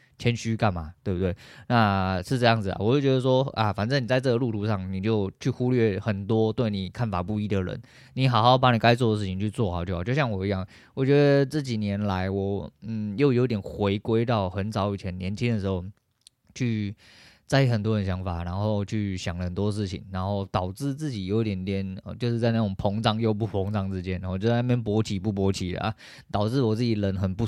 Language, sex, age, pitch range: Chinese, male, 20-39, 95-115 Hz